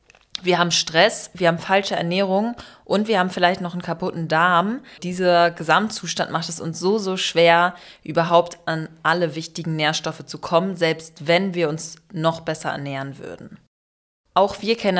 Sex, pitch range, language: female, 160-185 Hz, German